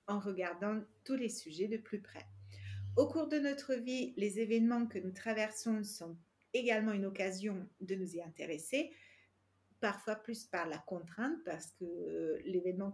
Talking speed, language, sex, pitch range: 160 wpm, French, female, 180-240 Hz